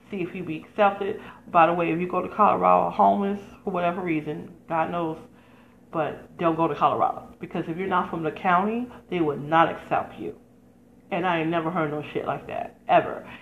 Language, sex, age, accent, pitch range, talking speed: English, female, 30-49, American, 160-200 Hz, 205 wpm